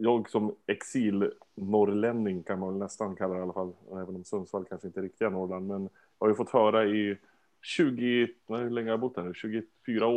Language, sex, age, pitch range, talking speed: Swedish, male, 30-49, 95-120 Hz, 205 wpm